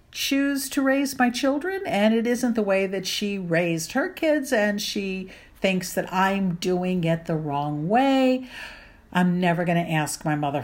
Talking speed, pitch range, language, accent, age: 180 wpm, 160-220 Hz, English, American, 50-69